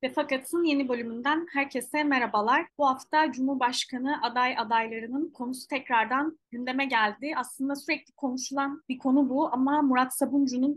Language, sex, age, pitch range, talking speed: Turkish, female, 30-49, 230-280 Hz, 135 wpm